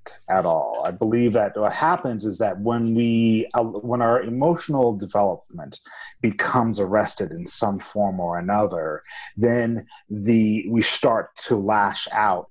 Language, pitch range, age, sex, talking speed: English, 105-130 Hz, 30-49, male, 145 wpm